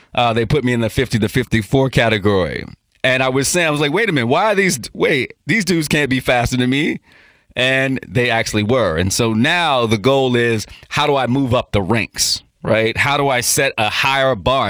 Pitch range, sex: 115-140 Hz, male